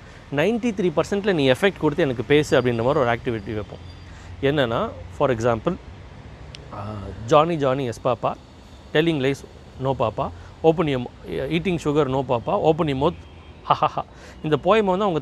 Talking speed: 140 wpm